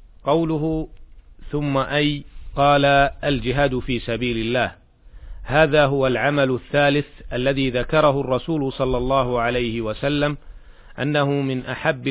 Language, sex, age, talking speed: Arabic, male, 40-59, 110 wpm